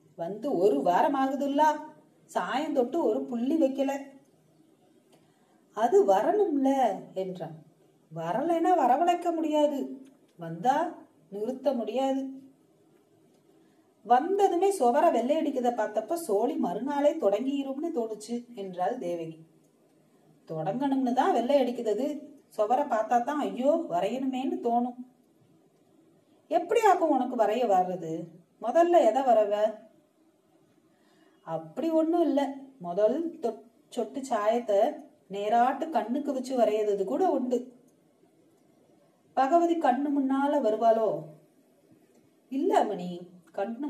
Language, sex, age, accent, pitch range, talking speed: Tamil, female, 30-49, native, 215-310 Hz, 85 wpm